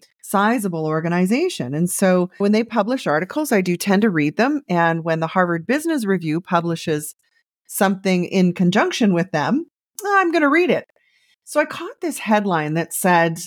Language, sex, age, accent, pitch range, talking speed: English, female, 40-59, American, 180-250 Hz, 170 wpm